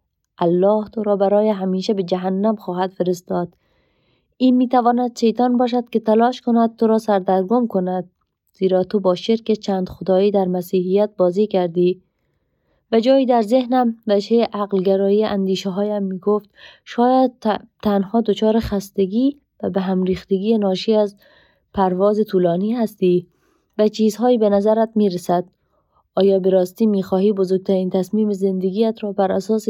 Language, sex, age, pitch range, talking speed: Persian, female, 30-49, 190-225 Hz, 135 wpm